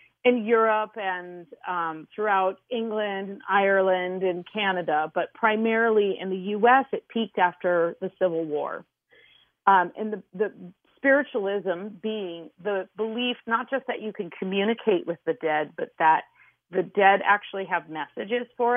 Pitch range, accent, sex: 180-230 Hz, American, female